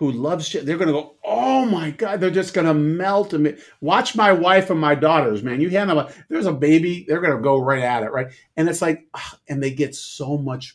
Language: English